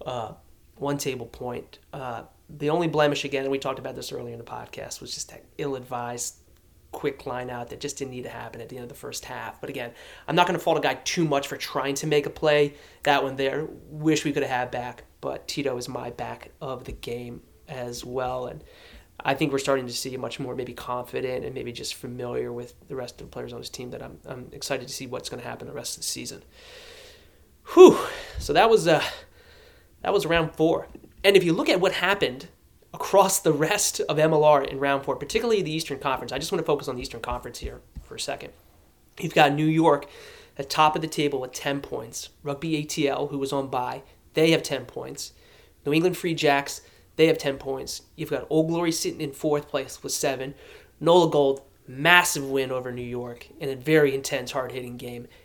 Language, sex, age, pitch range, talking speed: English, male, 30-49, 130-155 Hz, 225 wpm